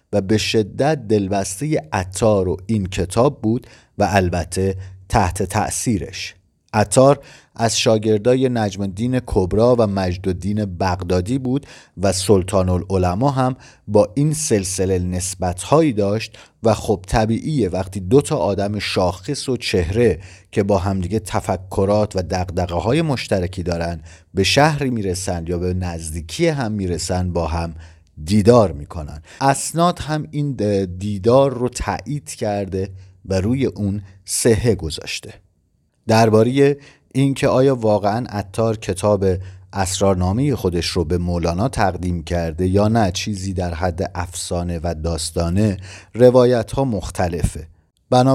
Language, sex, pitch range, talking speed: Persian, male, 90-115 Hz, 125 wpm